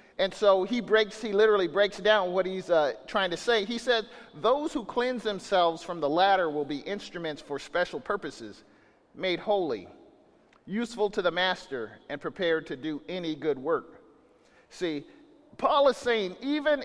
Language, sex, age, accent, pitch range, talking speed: English, male, 40-59, American, 185-245 Hz, 165 wpm